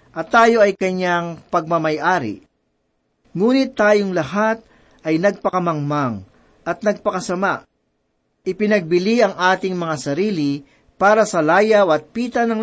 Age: 40-59